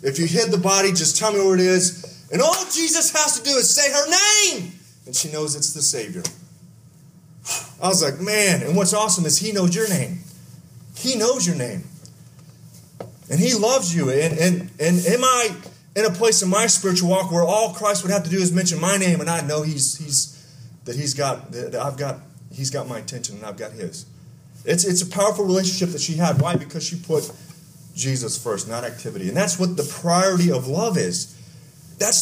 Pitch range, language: 150-195 Hz, English